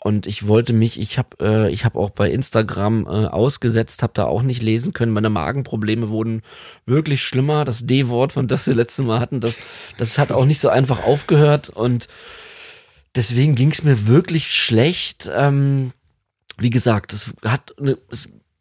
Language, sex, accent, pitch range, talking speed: German, male, German, 110-130 Hz, 175 wpm